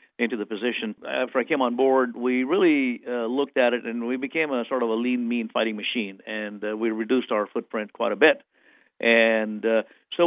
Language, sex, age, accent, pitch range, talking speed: English, male, 50-69, American, 110-125 Hz, 215 wpm